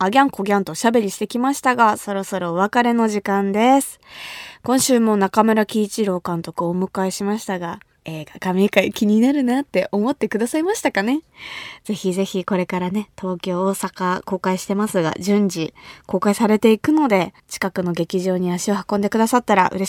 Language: Japanese